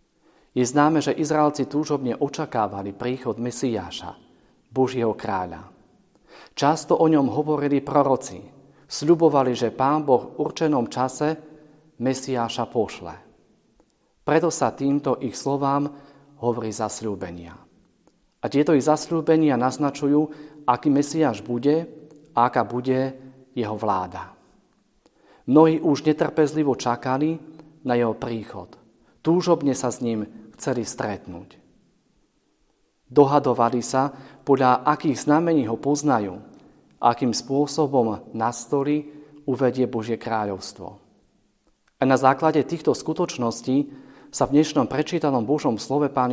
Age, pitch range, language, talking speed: 40-59, 120-150 Hz, Slovak, 105 wpm